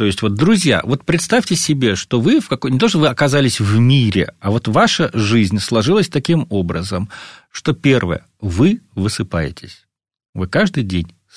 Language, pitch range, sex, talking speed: Russian, 105-140 Hz, male, 170 wpm